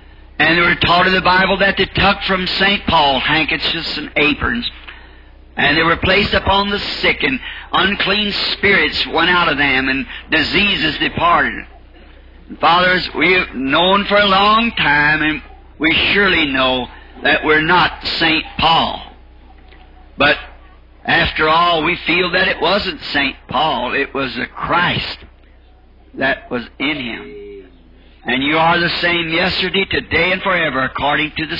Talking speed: 150 wpm